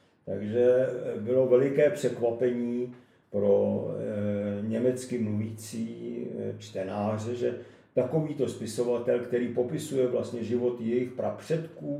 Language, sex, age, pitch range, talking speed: Czech, male, 50-69, 110-125 Hz, 85 wpm